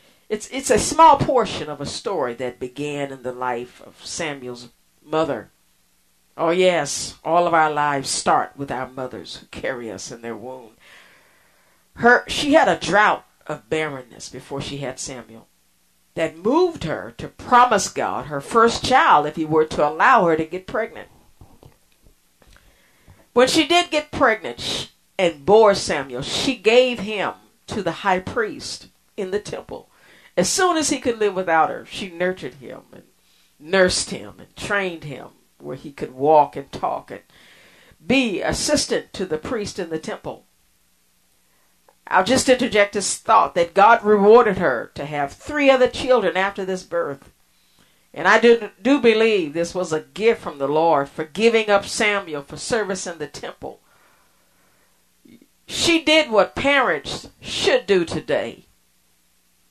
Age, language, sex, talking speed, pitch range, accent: 50-69, English, female, 155 wpm, 135-225 Hz, American